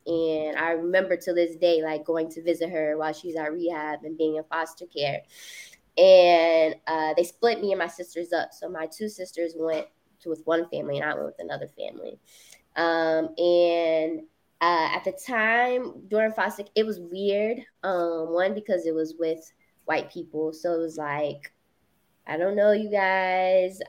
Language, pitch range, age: English, 160-200 Hz, 20-39